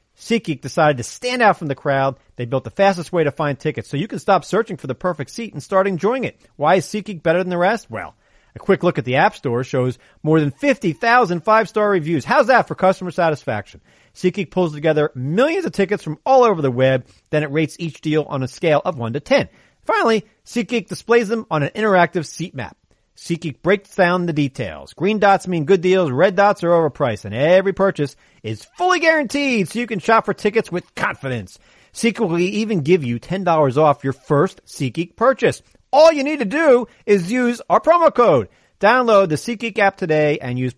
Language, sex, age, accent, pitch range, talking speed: English, male, 40-59, American, 140-210 Hz, 210 wpm